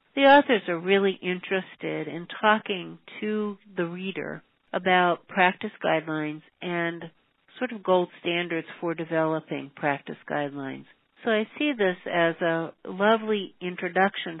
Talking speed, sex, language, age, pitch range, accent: 125 wpm, female, English, 60-79, 160-195 Hz, American